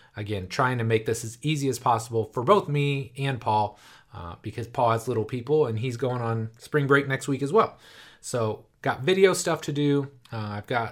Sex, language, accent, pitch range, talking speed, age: male, English, American, 115-140 Hz, 215 wpm, 30-49